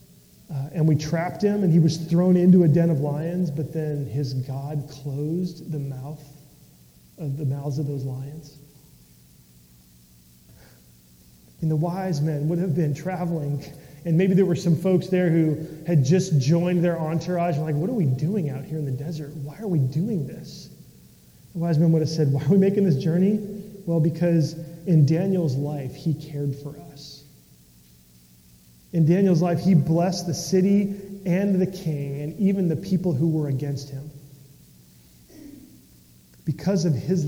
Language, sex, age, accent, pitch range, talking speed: English, male, 30-49, American, 140-170 Hz, 170 wpm